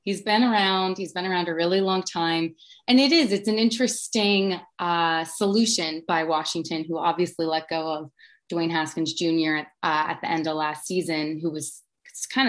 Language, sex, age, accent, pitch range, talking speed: English, female, 20-39, American, 165-205 Hz, 185 wpm